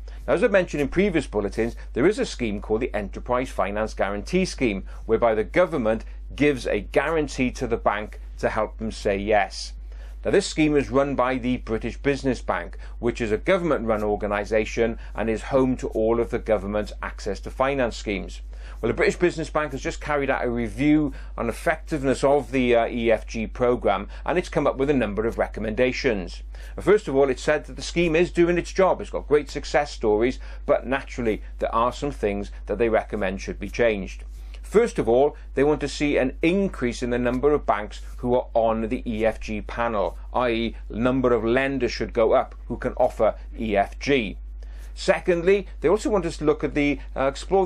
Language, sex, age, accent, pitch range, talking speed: English, male, 40-59, British, 110-150 Hz, 195 wpm